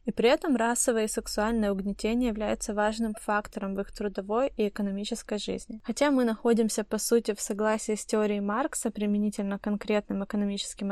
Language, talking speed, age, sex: Ukrainian, 160 wpm, 20-39, female